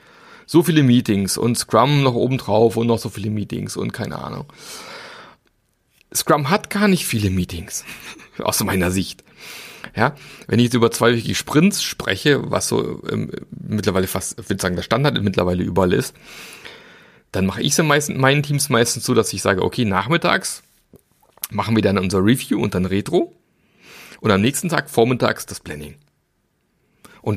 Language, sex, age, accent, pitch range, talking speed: German, male, 30-49, German, 100-145 Hz, 165 wpm